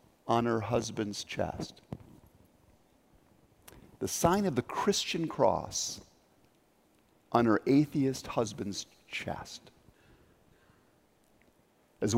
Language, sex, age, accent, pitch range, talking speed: English, male, 50-69, American, 130-190 Hz, 80 wpm